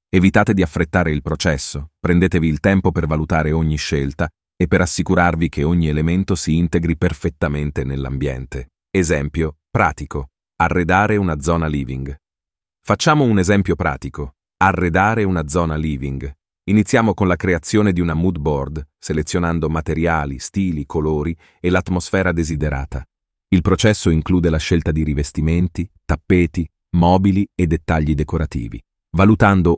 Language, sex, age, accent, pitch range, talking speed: Italian, male, 30-49, native, 75-90 Hz, 130 wpm